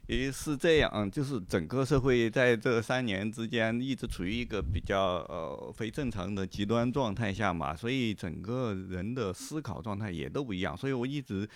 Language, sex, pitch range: Chinese, male, 90-120 Hz